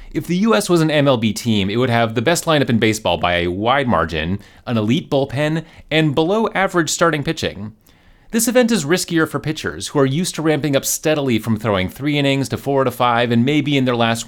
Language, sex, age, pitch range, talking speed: English, male, 30-49, 110-165 Hz, 225 wpm